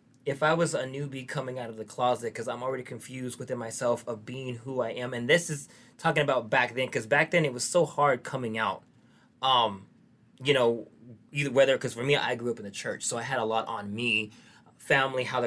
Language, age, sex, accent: English, 20-39, male, American